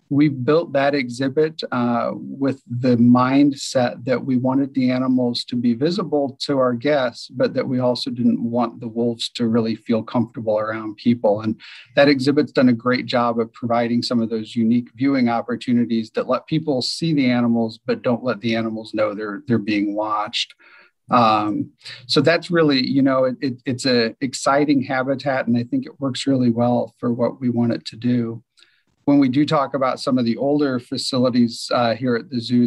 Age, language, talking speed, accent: 40-59, English, 195 wpm, American